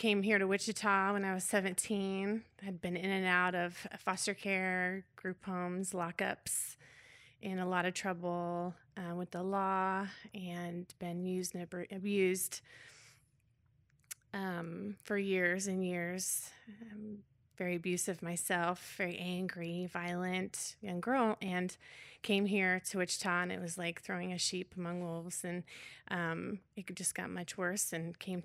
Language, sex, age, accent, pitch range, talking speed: English, female, 30-49, American, 175-195 Hz, 150 wpm